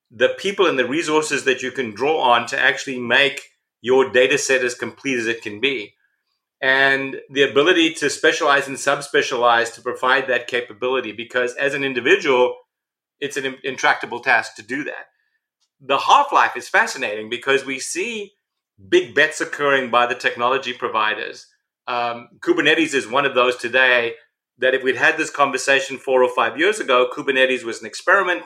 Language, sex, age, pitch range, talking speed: English, male, 40-59, 125-165 Hz, 170 wpm